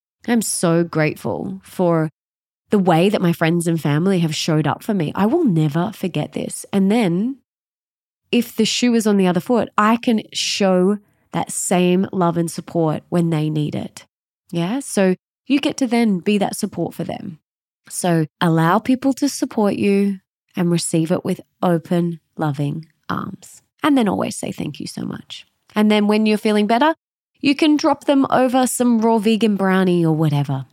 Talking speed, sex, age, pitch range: 180 wpm, female, 20-39, 165-215 Hz